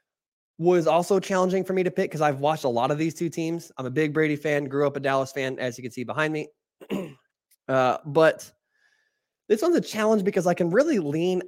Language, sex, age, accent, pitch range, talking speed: English, male, 20-39, American, 140-175 Hz, 225 wpm